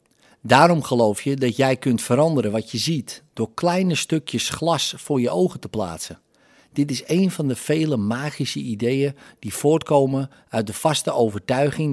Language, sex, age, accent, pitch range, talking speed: Dutch, male, 50-69, Dutch, 120-155 Hz, 165 wpm